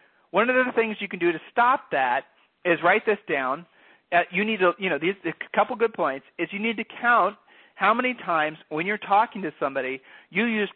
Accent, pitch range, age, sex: American, 165-215 Hz, 40-59, male